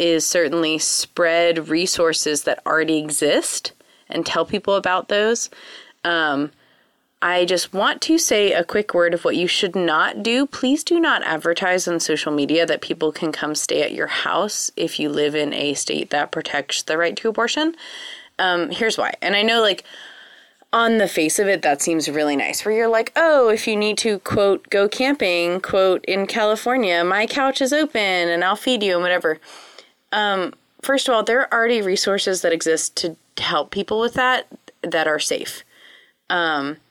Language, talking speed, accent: English, 185 wpm, American